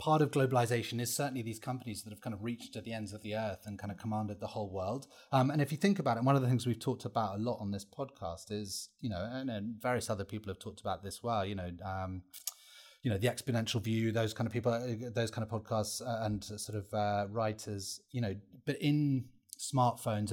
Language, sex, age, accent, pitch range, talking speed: English, male, 30-49, British, 110-140 Hz, 245 wpm